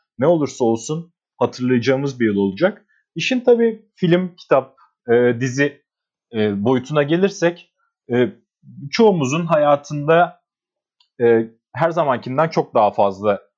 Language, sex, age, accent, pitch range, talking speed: Turkish, male, 40-59, native, 115-160 Hz, 110 wpm